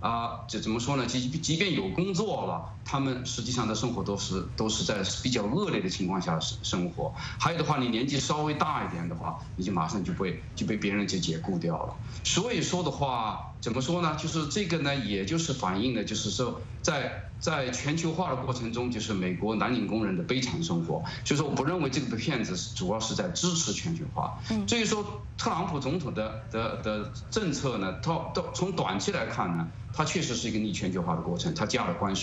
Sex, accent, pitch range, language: male, Chinese, 105-150 Hz, English